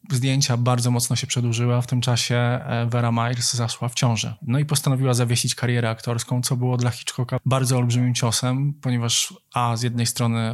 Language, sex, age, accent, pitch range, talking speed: Polish, male, 20-39, native, 115-130 Hz, 180 wpm